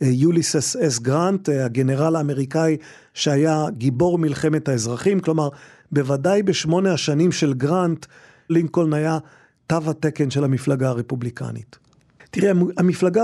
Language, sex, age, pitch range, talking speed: Hebrew, male, 40-59, 135-165 Hz, 115 wpm